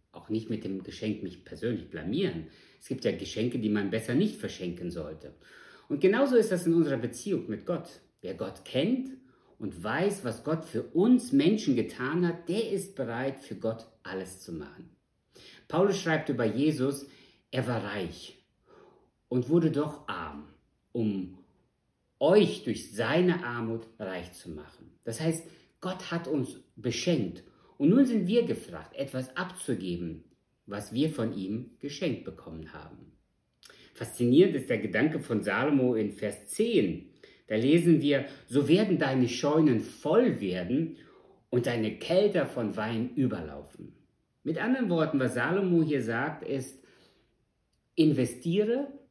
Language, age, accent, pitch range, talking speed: German, 50-69, German, 110-170 Hz, 145 wpm